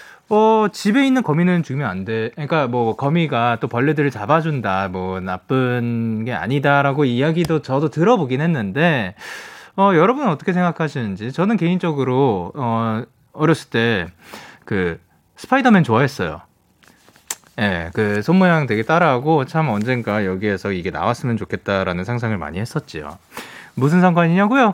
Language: Korean